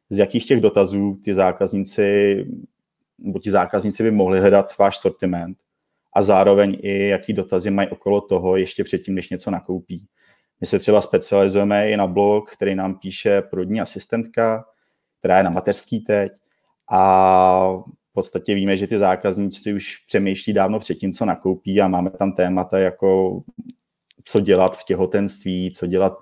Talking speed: 155 wpm